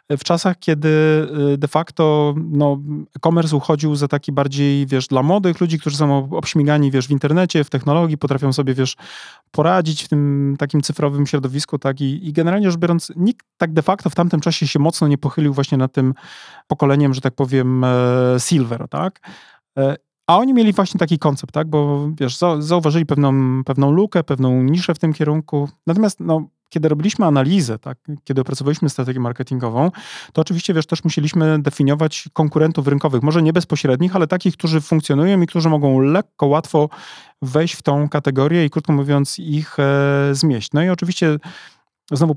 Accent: native